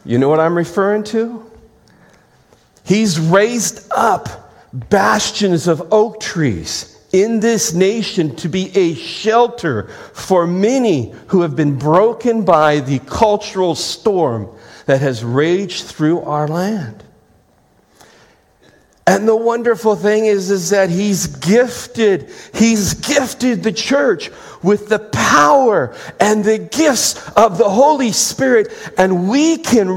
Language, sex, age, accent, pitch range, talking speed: English, male, 40-59, American, 150-220 Hz, 120 wpm